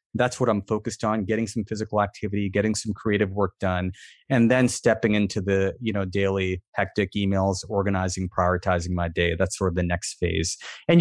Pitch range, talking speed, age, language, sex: 100-125 Hz, 190 wpm, 30-49, English, male